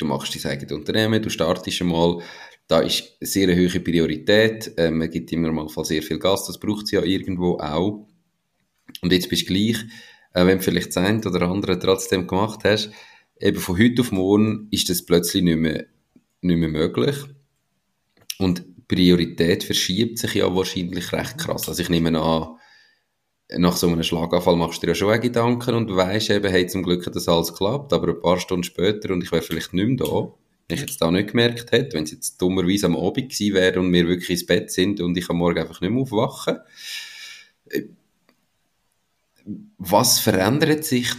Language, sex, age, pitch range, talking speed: German, male, 30-49, 85-105 Hz, 190 wpm